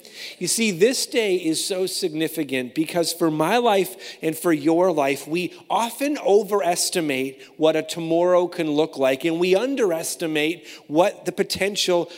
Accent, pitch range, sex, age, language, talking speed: American, 160-220 Hz, male, 40-59, English, 150 wpm